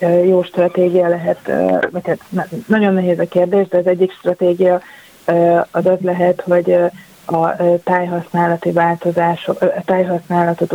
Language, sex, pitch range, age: Hungarian, female, 170-180 Hz, 30-49